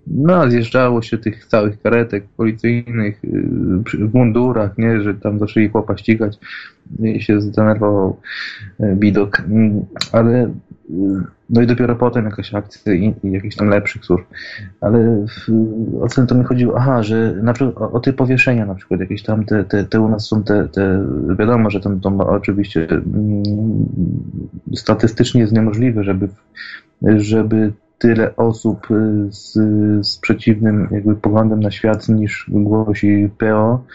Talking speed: 145 wpm